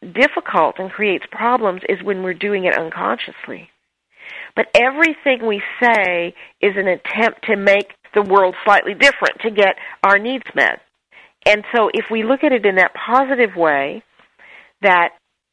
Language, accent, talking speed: English, American, 155 wpm